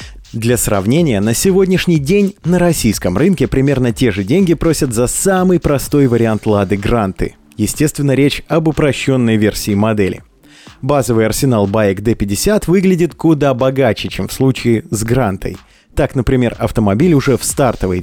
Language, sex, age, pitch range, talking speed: Russian, male, 30-49, 105-160 Hz, 145 wpm